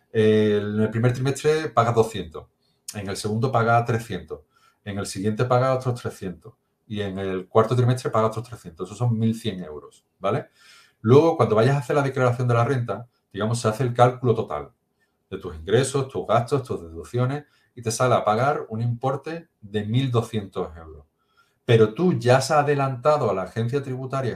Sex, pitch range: male, 110-140 Hz